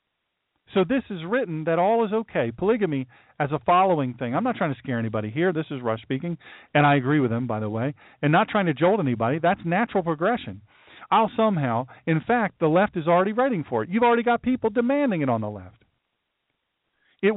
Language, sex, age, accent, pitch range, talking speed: English, male, 40-59, American, 130-175 Hz, 215 wpm